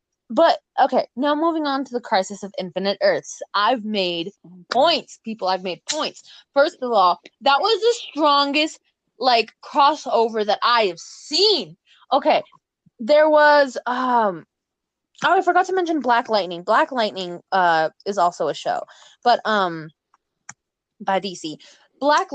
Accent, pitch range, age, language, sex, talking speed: American, 210-295 Hz, 20-39, English, female, 145 wpm